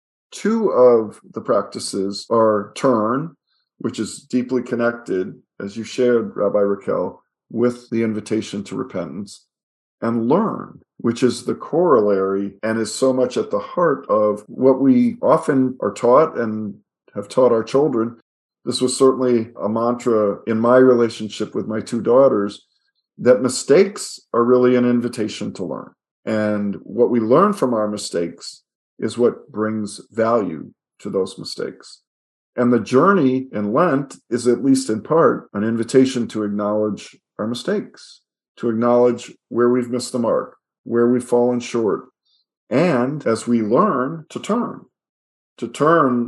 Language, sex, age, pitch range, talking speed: English, male, 40-59, 105-125 Hz, 145 wpm